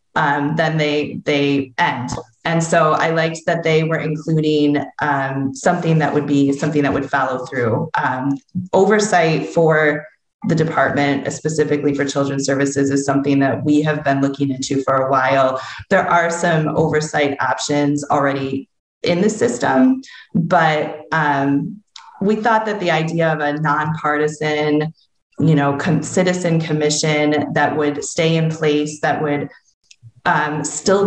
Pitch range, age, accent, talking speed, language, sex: 145-170 Hz, 20-39, American, 145 wpm, English, female